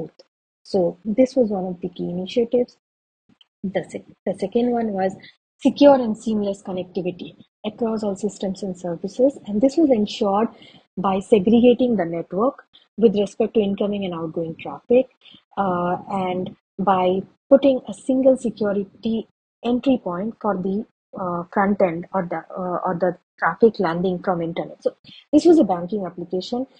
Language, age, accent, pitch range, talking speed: English, 30-49, Indian, 185-225 Hz, 150 wpm